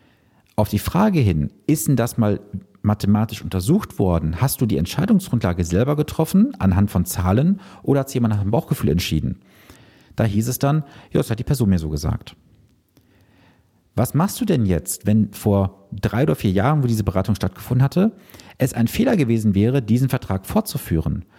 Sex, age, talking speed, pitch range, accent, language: male, 40-59, 180 wpm, 95-140 Hz, German, German